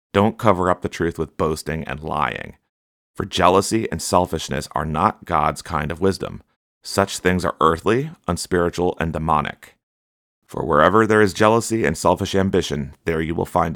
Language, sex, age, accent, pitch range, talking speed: English, male, 30-49, American, 75-95 Hz, 165 wpm